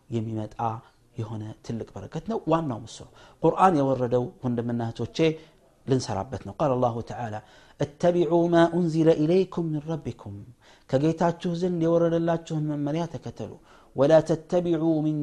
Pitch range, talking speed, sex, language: 115-165 Hz, 65 wpm, male, Amharic